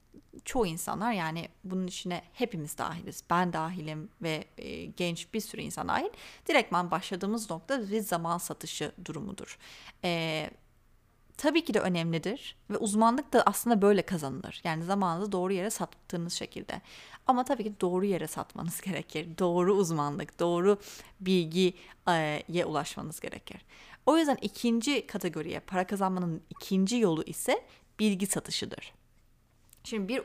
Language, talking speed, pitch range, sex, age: Turkish, 130 wpm, 180-240 Hz, female, 30-49